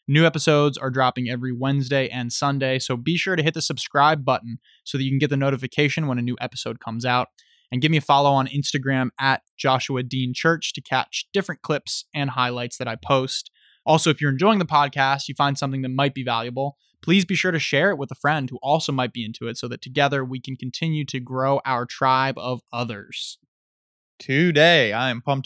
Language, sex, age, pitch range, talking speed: English, male, 20-39, 120-140 Hz, 220 wpm